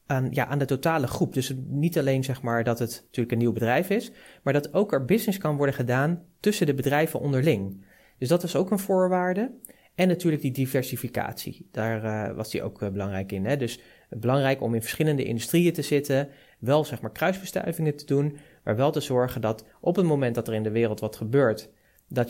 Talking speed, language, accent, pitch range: 215 wpm, Dutch, Dutch, 115-150 Hz